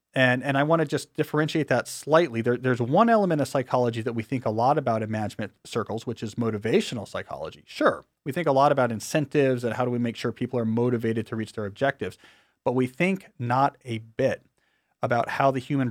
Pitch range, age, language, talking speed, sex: 115-150 Hz, 40-59, English, 220 wpm, male